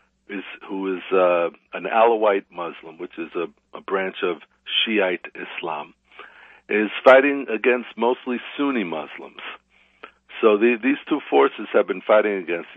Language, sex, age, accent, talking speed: English, male, 60-79, American, 140 wpm